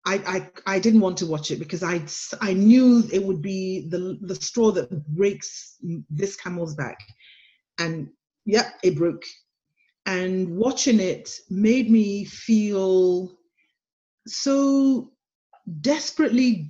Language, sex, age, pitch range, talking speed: English, female, 40-59, 185-235 Hz, 125 wpm